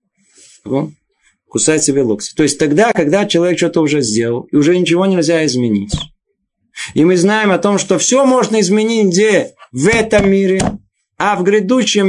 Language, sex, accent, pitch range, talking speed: Russian, male, native, 145-195 Hz, 155 wpm